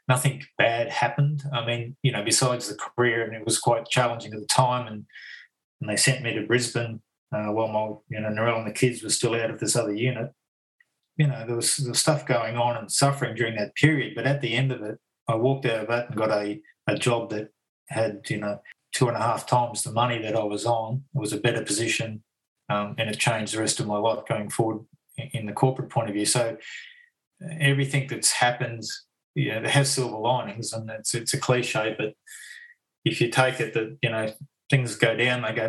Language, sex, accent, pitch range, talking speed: English, male, Australian, 110-135 Hz, 230 wpm